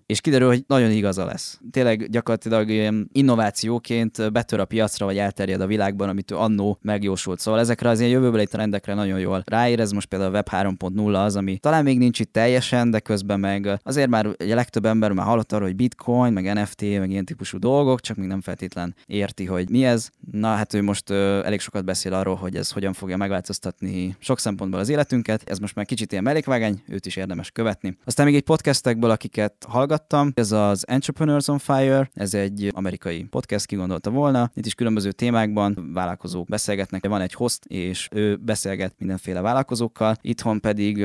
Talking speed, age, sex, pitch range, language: 185 wpm, 20-39, male, 95-120 Hz, Hungarian